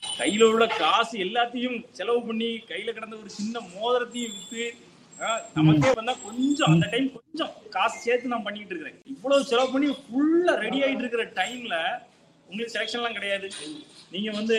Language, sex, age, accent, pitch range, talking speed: English, male, 30-49, Indian, 170-235 Hz, 110 wpm